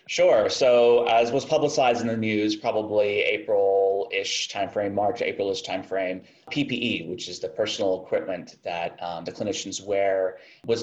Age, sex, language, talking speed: 30-49, male, English, 145 wpm